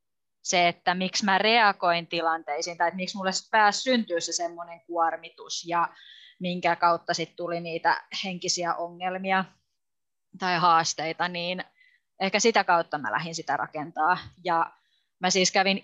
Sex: female